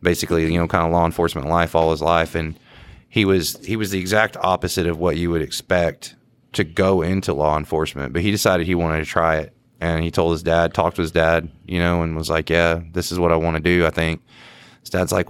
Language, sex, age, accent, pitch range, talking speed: English, male, 30-49, American, 85-110 Hz, 250 wpm